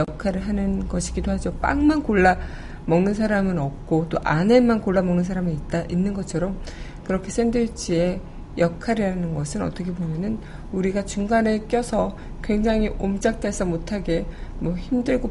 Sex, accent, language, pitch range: female, native, Korean, 175-225 Hz